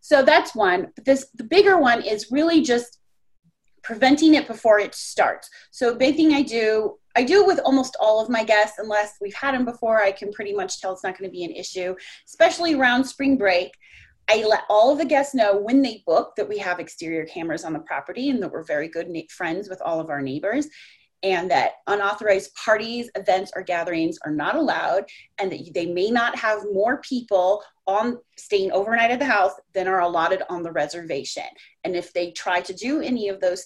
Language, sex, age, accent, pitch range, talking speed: English, female, 30-49, American, 190-285 Hz, 210 wpm